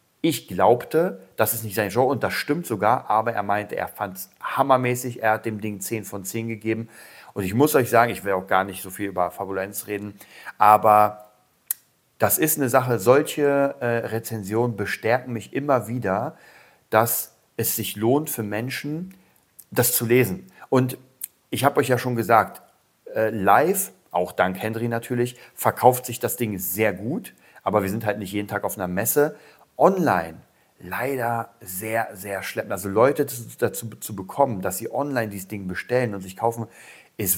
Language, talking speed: German, 180 wpm